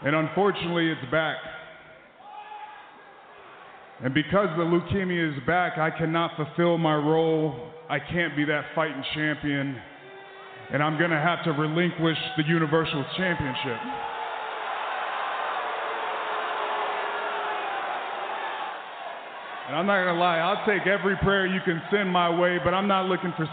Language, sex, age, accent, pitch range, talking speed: English, male, 20-39, American, 160-190 Hz, 125 wpm